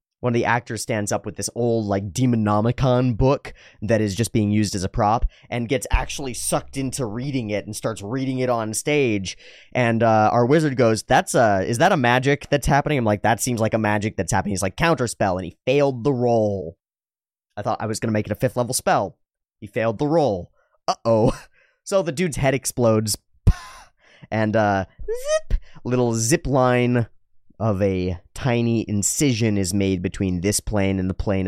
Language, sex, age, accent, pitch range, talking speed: English, male, 30-49, American, 100-125 Hz, 195 wpm